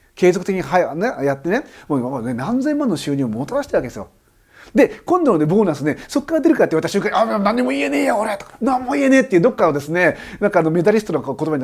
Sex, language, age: male, Japanese, 40-59